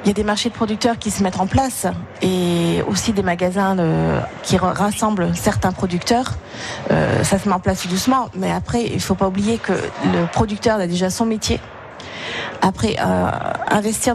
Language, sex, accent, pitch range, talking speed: French, female, French, 175-210 Hz, 175 wpm